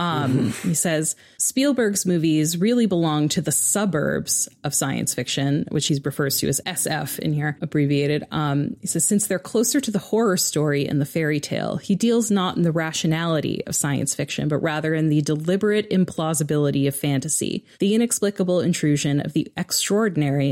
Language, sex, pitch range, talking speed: English, female, 150-185 Hz, 175 wpm